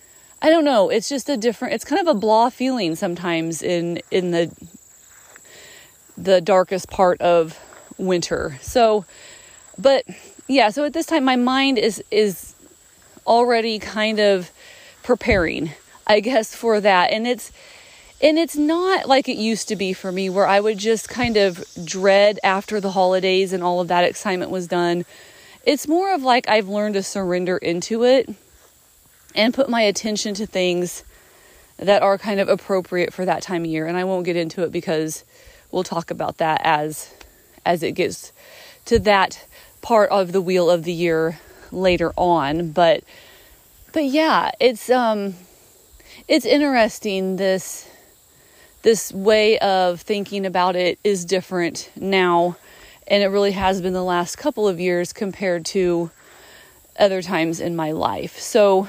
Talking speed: 160 wpm